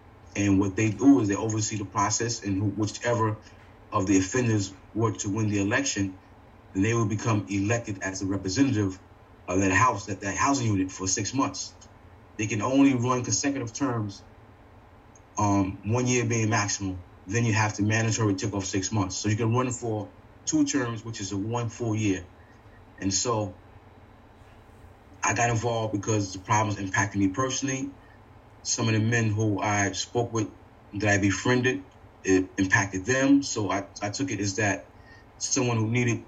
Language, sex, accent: English, male, American